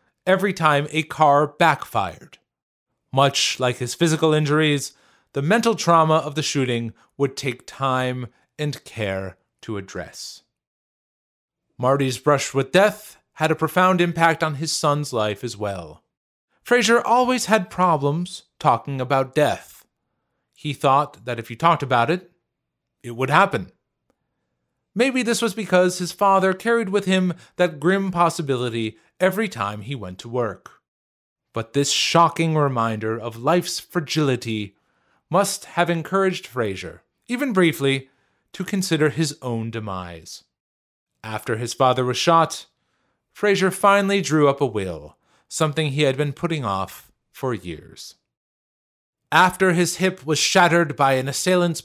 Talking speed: 135 wpm